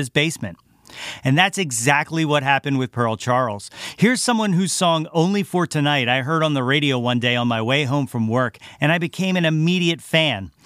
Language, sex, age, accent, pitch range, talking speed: English, male, 40-59, American, 115-150 Hz, 195 wpm